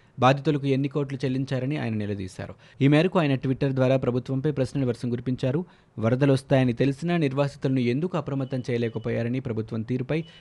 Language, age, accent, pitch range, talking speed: Telugu, 20-39, native, 115-140 Hz, 140 wpm